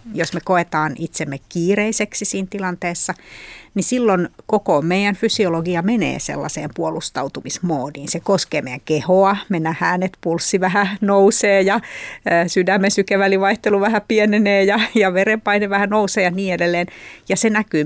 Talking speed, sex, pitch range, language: 140 wpm, female, 165-205 Hz, Finnish